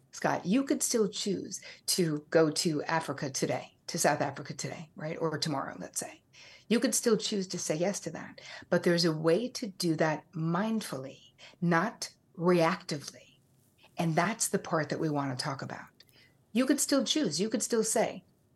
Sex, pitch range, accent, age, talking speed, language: female, 155-195 Hz, American, 60-79, 180 wpm, English